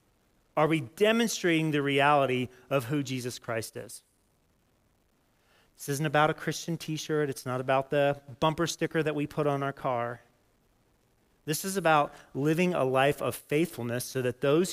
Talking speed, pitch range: 160 wpm, 130-170 Hz